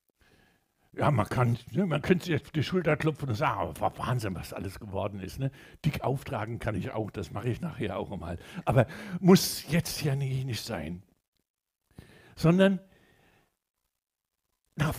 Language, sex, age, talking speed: German, male, 60-79, 155 wpm